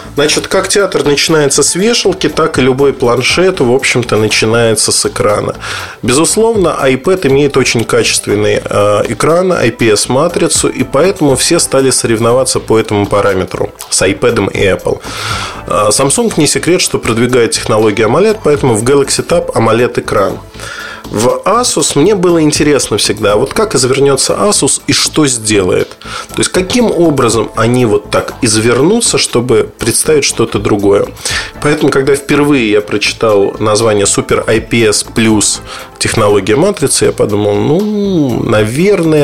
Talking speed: 130 wpm